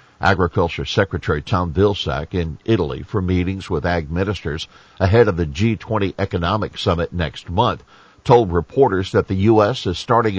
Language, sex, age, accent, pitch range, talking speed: English, male, 50-69, American, 90-110 Hz, 150 wpm